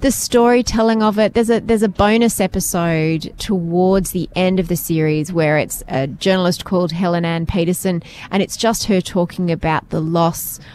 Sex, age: female, 20-39